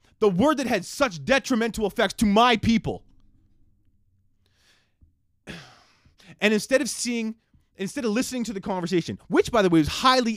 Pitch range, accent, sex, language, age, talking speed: 180-255 Hz, American, male, English, 20-39, 150 wpm